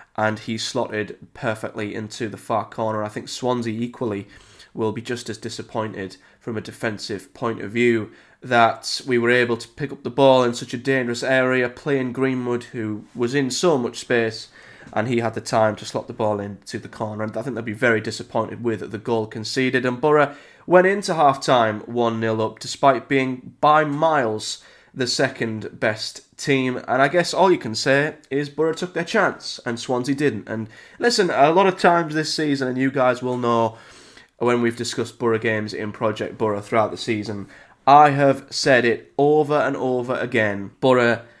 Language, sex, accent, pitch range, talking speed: English, male, British, 110-135 Hz, 190 wpm